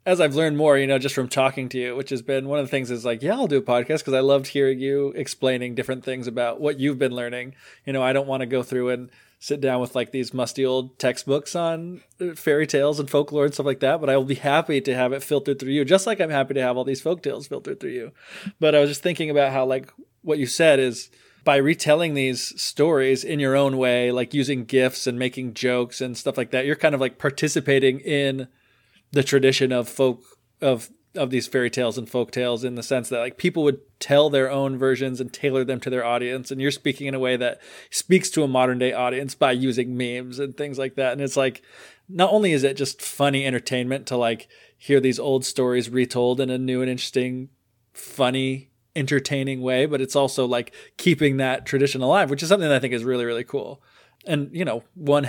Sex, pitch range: male, 125-140 Hz